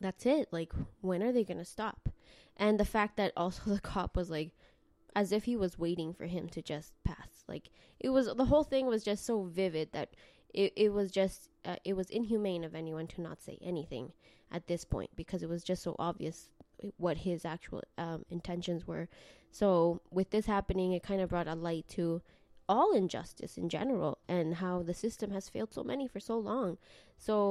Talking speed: 205 wpm